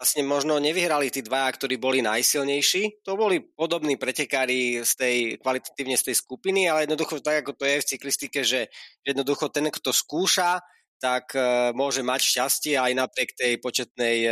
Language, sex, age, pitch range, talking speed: Slovak, male, 20-39, 120-145 Hz, 165 wpm